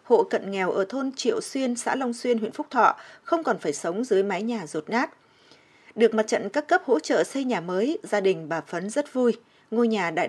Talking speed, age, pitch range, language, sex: 240 wpm, 20-39, 195-245 Hz, Vietnamese, female